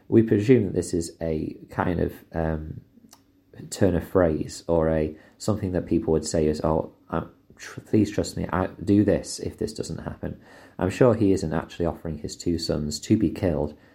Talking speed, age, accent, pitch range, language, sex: 195 wpm, 30-49, British, 80-100 Hz, English, male